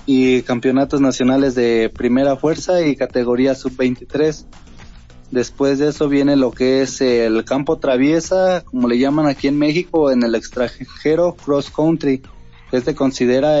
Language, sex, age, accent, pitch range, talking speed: Spanish, male, 20-39, Mexican, 125-145 Hz, 140 wpm